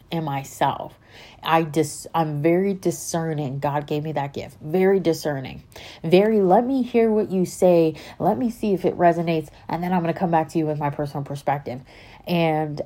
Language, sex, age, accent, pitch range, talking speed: English, female, 30-49, American, 135-175 Hz, 190 wpm